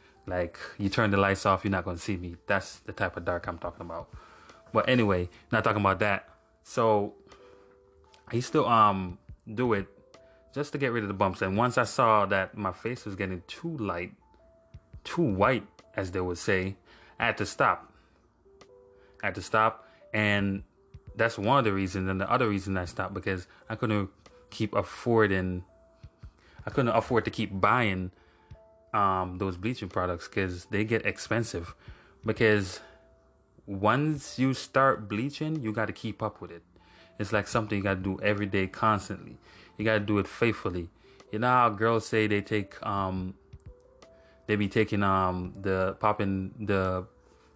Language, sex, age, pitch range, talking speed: English, male, 20-39, 95-110 Hz, 175 wpm